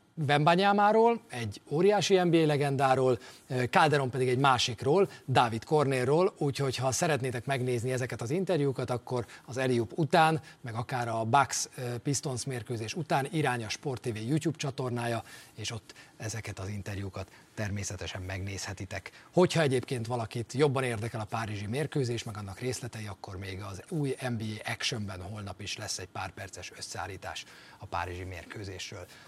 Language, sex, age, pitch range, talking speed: Hungarian, male, 40-59, 120-165 Hz, 135 wpm